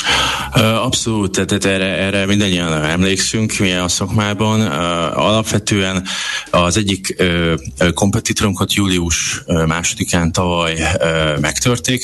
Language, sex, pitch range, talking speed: Hungarian, male, 80-100 Hz, 90 wpm